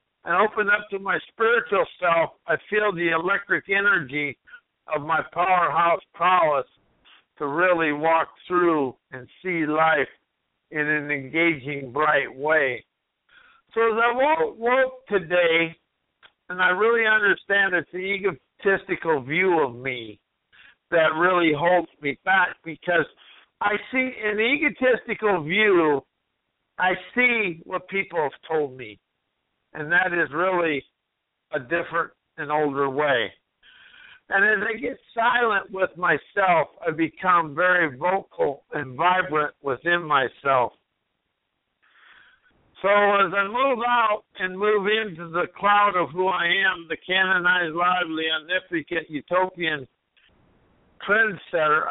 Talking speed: 120 wpm